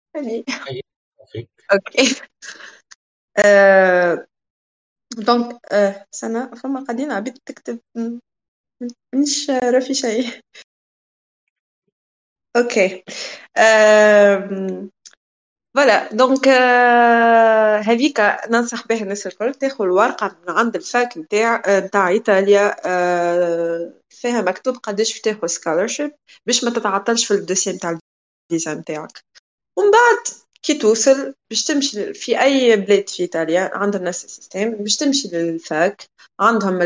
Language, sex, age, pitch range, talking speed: Arabic, female, 20-39, 185-245 Hz, 95 wpm